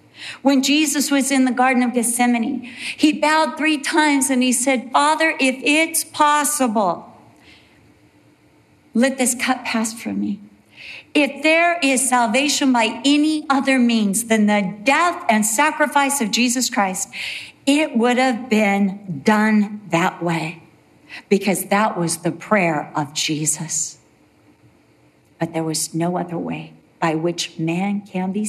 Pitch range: 155-250 Hz